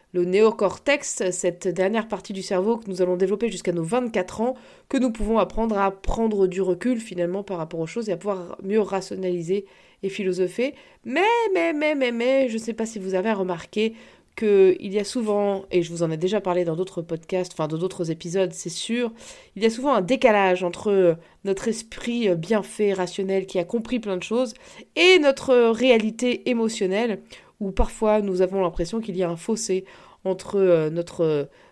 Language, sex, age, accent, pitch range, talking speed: French, female, 20-39, French, 185-225 Hz, 200 wpm